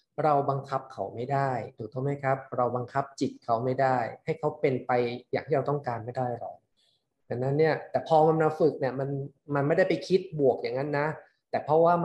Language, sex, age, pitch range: Thai, male, 20-39, 130-165 Hz